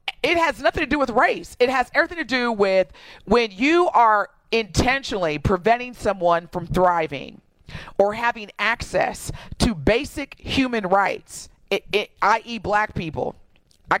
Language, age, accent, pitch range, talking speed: English, 40-59, American, 195-260 Hz, 135 wpm